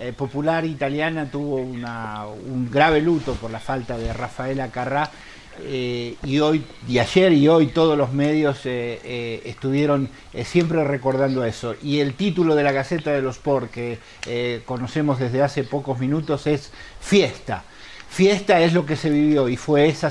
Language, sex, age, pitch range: Spanish, male, 50-69, 125-150 Hz